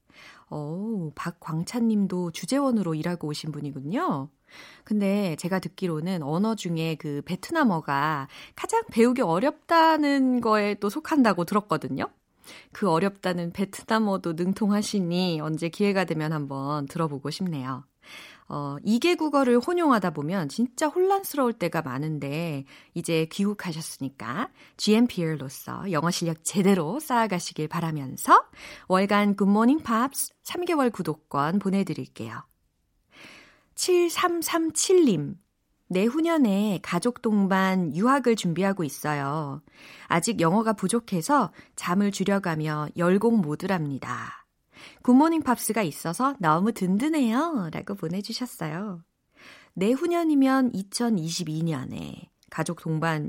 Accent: native